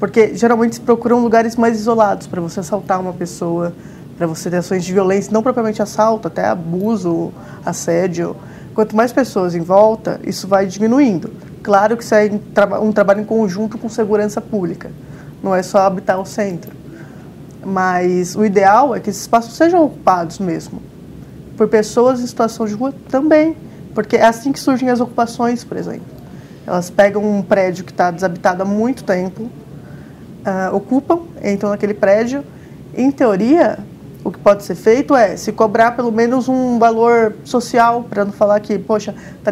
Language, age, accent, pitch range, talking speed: Portuguese, 20-39, Brazilian, 190-235 Hz, 170 wpm